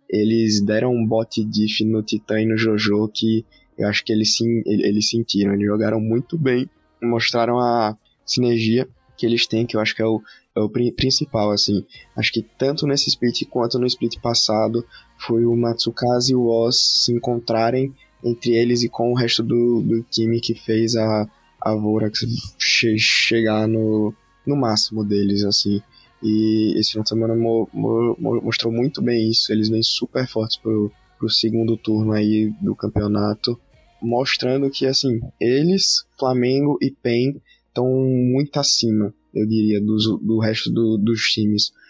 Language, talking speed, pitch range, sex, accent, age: Portuguese, 160 wpm, 110-120 Hz, male, Brazilian, 20-39